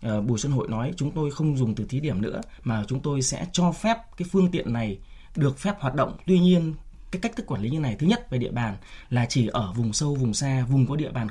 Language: Vietnamese